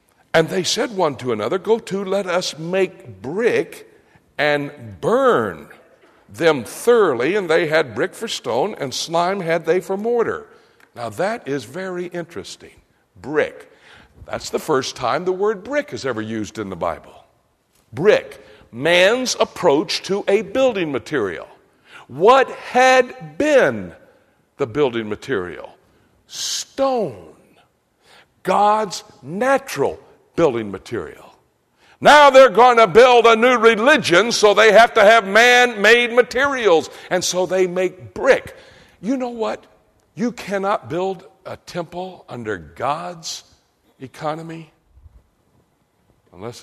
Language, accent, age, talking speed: English, American, 60-79, 125 wpm